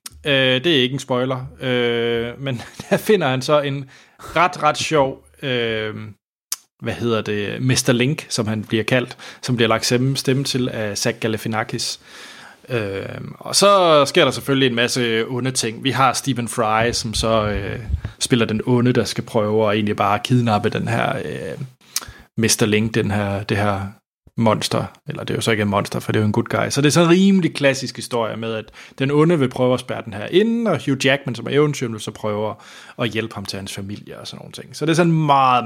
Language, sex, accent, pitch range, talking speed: Danish, male, native, 110-135 Hz, 205 wpm